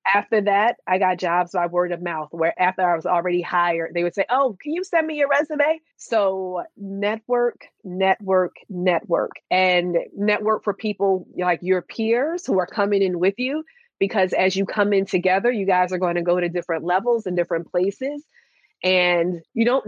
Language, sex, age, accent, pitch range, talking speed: English, female, 30-49, American, 180-215 Hz, 190 wpm